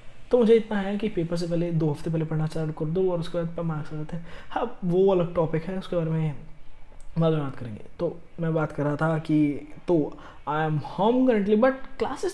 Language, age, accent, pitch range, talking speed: Hindi, 20-39, native, 155-195 Hz, 240 wpm